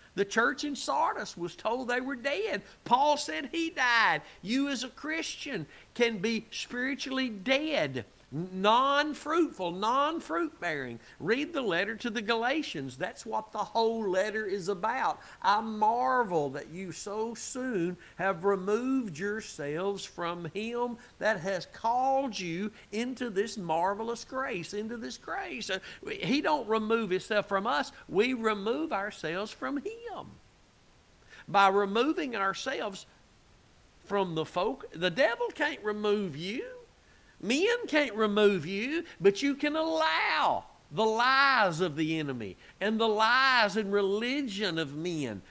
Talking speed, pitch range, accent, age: 130 wpm, 190-265 Hz, American, 50-69